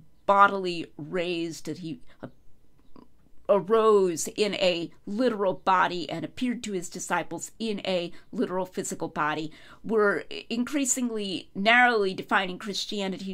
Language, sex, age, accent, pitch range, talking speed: English, female, 40-59, American, 165-225 Hz, 110 wpm